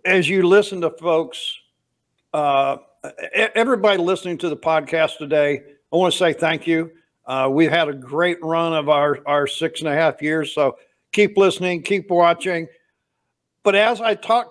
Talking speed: 170 wpm